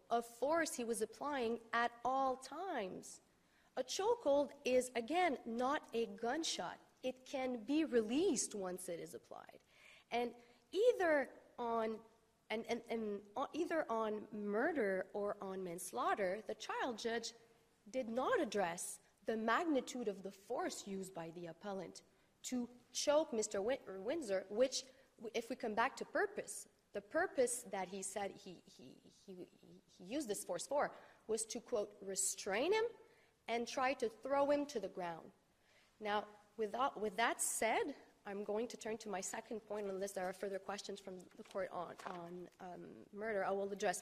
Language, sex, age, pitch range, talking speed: English, female, 40-59, 200-255 Hz, 160 wpm